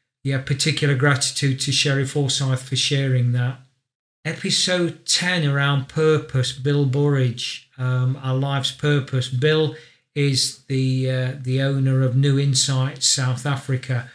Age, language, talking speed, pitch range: 40-59, English, 125 wpm, 130-150 Hz